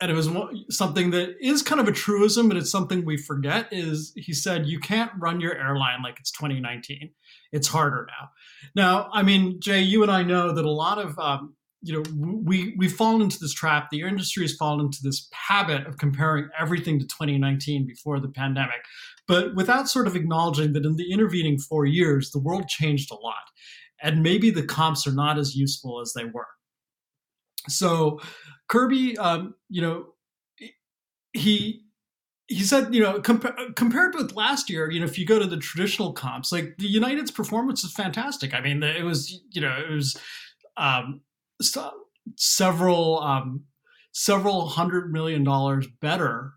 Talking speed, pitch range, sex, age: 175 wpm, 145-195 Hz, male, 30-49